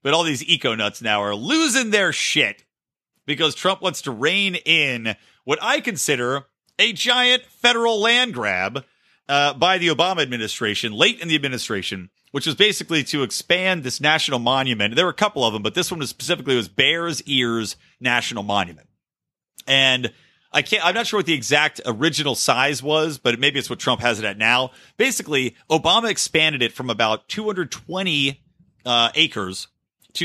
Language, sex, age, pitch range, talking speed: English, male, 40-59, 120-180 Hz, 175 wpm